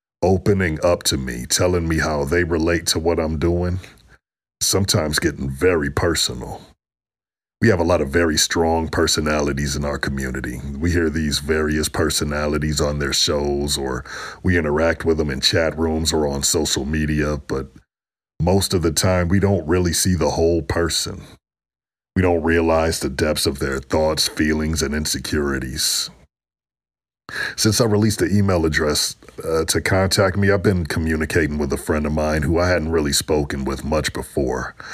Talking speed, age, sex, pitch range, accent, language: 165 wpm, 40-59, male, 75-90 Hz, American, English